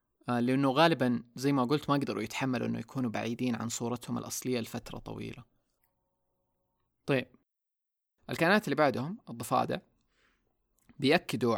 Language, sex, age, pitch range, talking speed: Arabic, male, 20-39, 115-130 Hz, 115 wpm